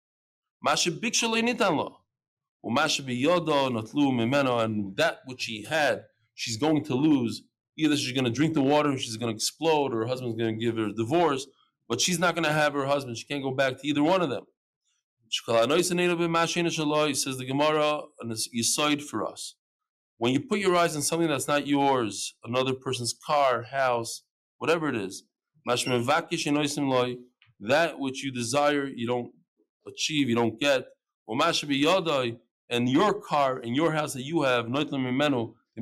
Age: 20-39